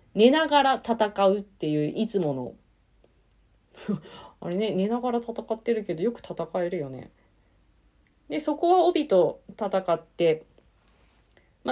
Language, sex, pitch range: Japanese, female, 150-250 Hz